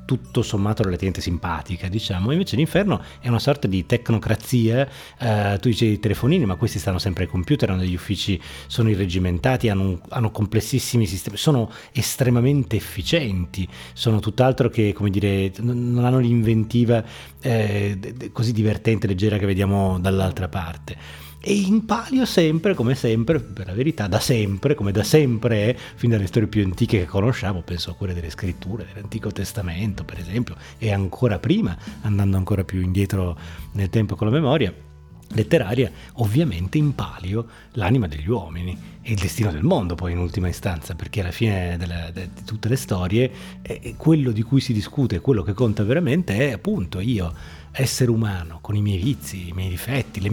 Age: 30-49